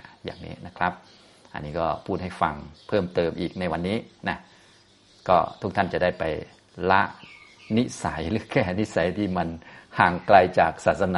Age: 30-49